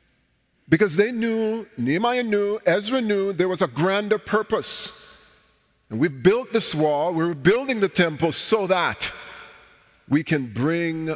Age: 50-69